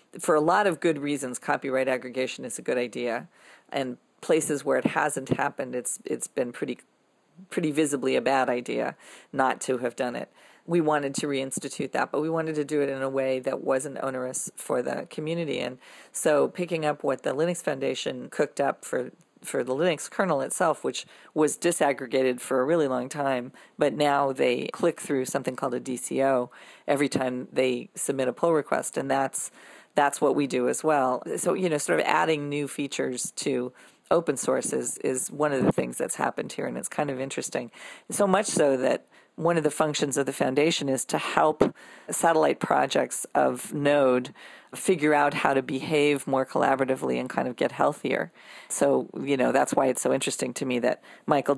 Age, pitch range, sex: 40-59, 130-150 Hz, female